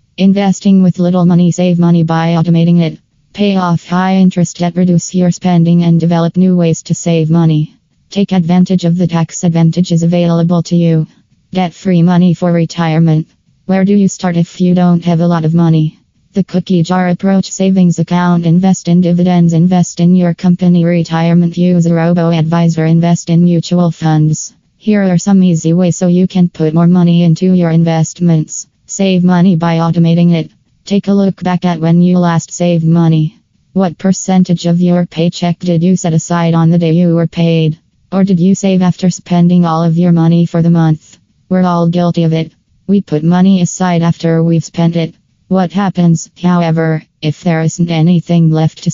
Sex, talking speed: female, 185 wpm